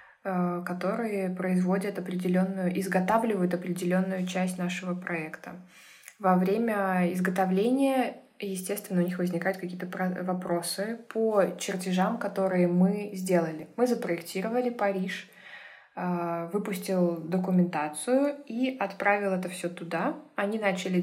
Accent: native